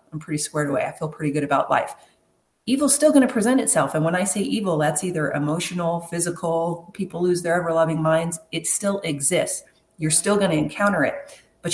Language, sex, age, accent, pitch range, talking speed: English, female, 40-59, American, 150-195 Hz, 210 wpm